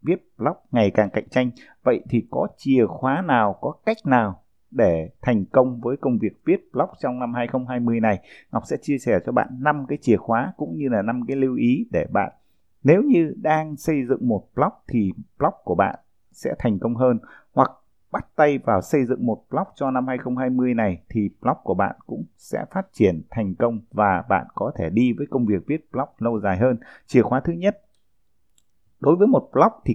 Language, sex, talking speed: Vietnamese, male, 210 wpm